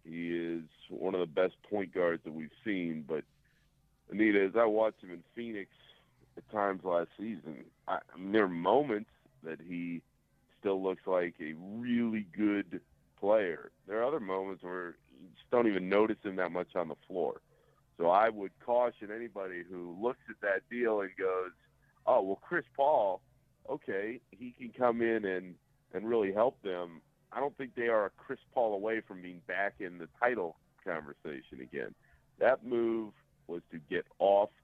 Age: 50-69